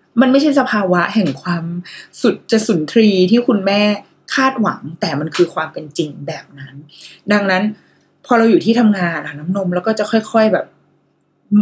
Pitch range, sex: 175-235 Hz, female